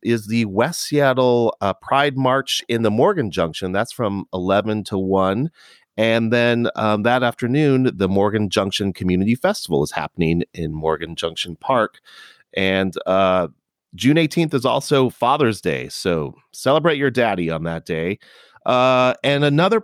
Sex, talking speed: male, 150 wpm